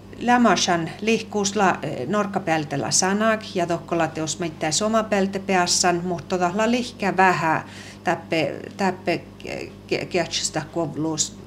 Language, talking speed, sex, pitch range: Hungarian, 90 wpm, female, 150-190 Hz